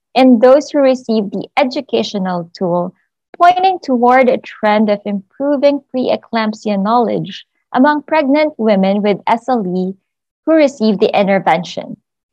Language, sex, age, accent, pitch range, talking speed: English, female, 20-39, Filipino, 200-255 Hz, 115 wpm